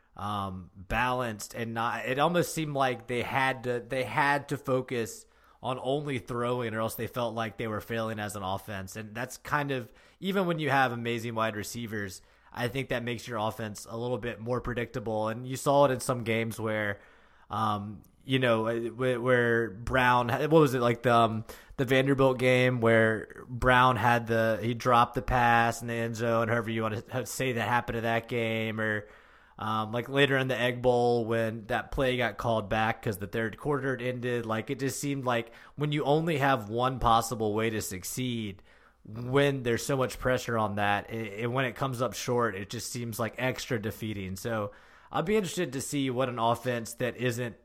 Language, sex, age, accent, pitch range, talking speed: English, male, 20-39, American, 110-130 Hz, 200 wpm